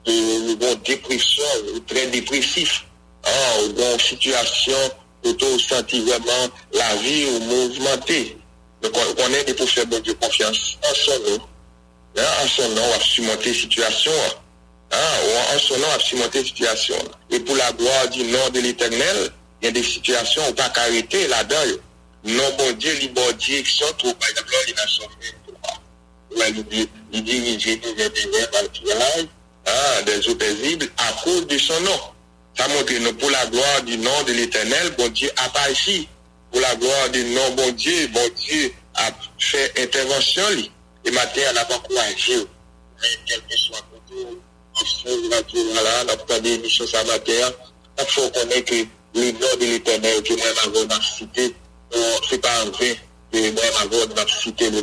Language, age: English, 60-79